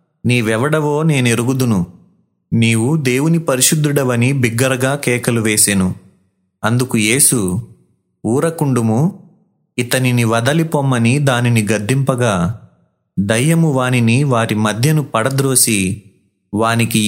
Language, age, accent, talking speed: Telugu, 30-49, native, 75 wpm